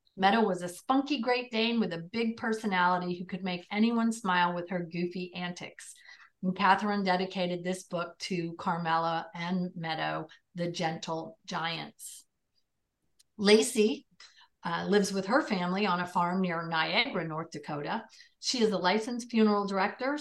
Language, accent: English, American